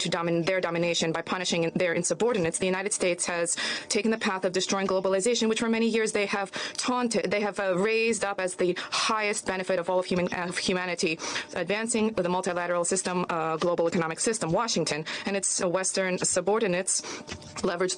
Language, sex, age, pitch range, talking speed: English, female, 20-39, 175-205 Hz, 185 wpm